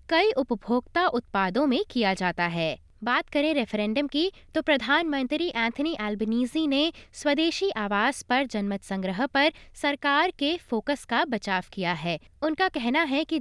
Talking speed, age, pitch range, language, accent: 150 wpm, 20-39, 215-300 Hz, Hindi, native